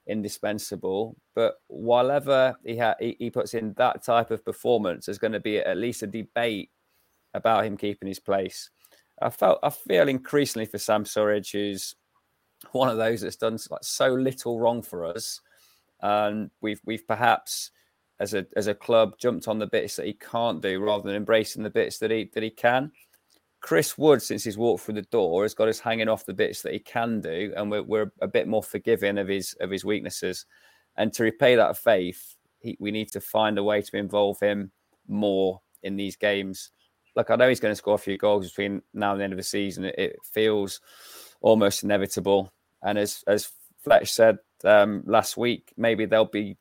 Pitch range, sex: 100-115 Hz, male